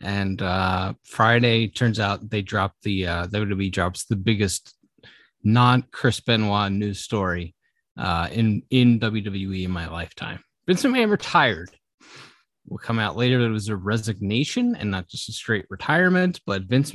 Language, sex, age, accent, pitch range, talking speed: English, male, 30-49, American, 105-130 Hz, 155 wpm